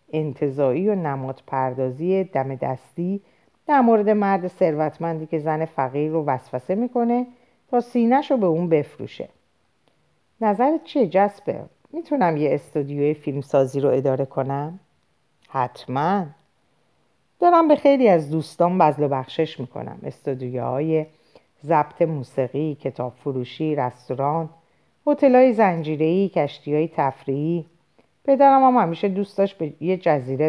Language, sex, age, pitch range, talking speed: Persian, female, 50-69, 145-205 Hz, 115 wpm